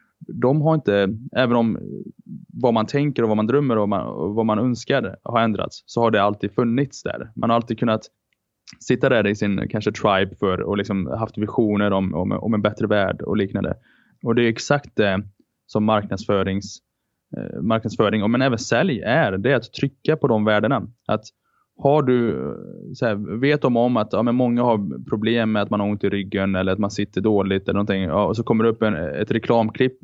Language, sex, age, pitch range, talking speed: Swedish, male, 20-39, 105-125 Hz, 200 wpm